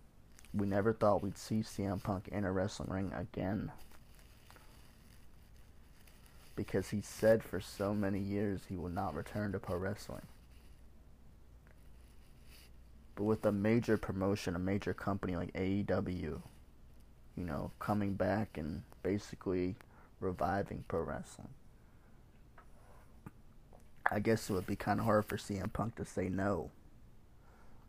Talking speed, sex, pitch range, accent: 125 wpm, male, 90-105 Hz, American